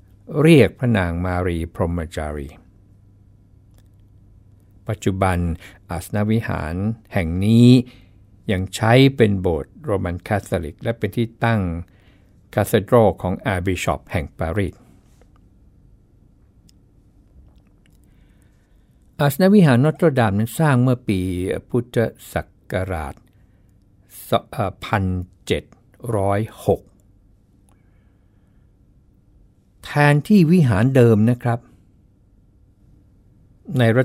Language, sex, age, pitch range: Thai, male, 60-79, 95-115 Hz